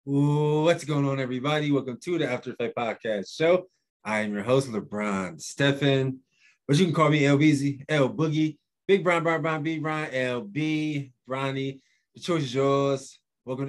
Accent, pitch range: American, 100-140 Hz